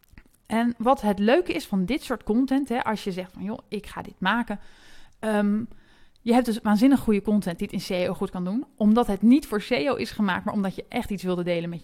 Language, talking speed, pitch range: Dutch, 245 wpm, 195-240 Hz